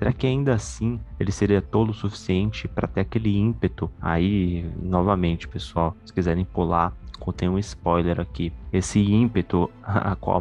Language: Portuguese